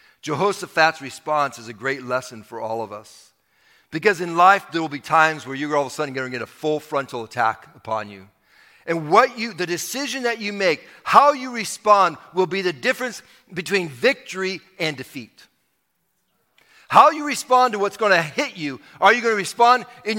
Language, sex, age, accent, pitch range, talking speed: English, male, 50-69, American, 130-195 Hz, 195 wpm